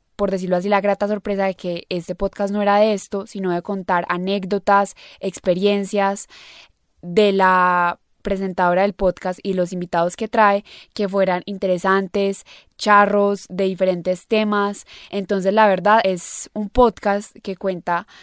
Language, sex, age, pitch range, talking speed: Spanish, female, 10-29, 180-205 Hz, 145 wpm